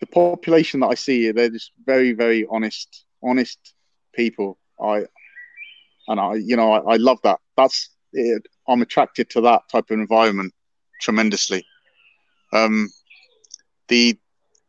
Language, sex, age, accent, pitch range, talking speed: English, male, 30-49, British, 115-160 Hz, 135 wpm